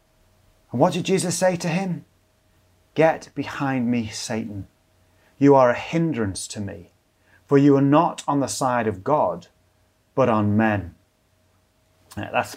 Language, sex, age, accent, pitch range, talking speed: English, male, 30-49, British, 100-150 Hz, 145 wpm